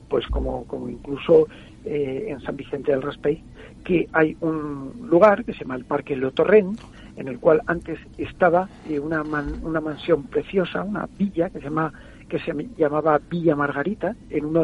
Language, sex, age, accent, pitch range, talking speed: Spanish, male, 60-79, Spanish, 145-180 Hz, 175 wpm